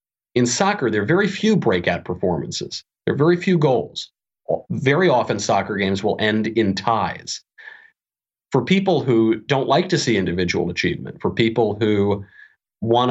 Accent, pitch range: American, 110-140 Hz